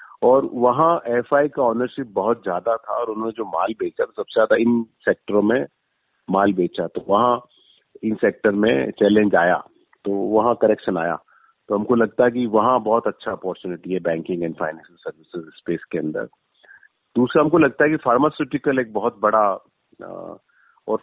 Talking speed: 170 wpm